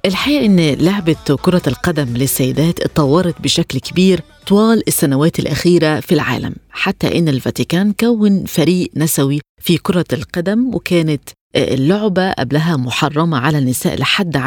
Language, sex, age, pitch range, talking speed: Arabic, female, 20-39, 145-185 Hz, 125 wpm